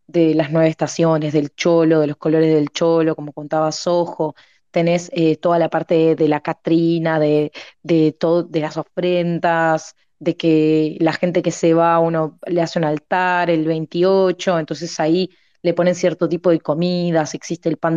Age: 20-39